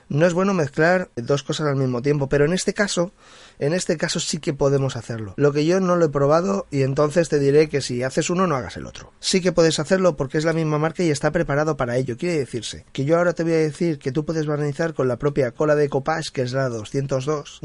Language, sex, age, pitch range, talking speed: Spanish, male, 30-49, 140-170 Hz, 260 wpm